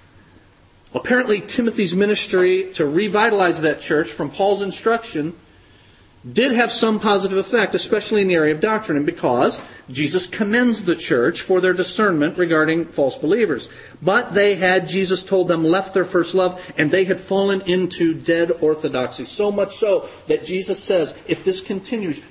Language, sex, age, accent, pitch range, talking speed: English, male, 40-59, American, 115-190 Hz, 160 wpm